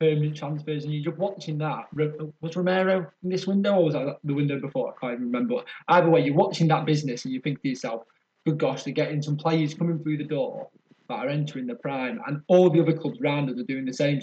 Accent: British